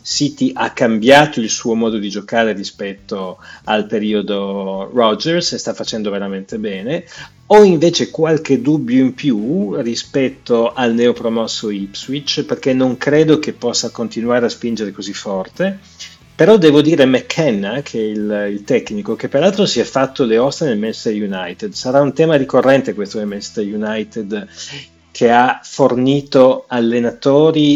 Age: 30-49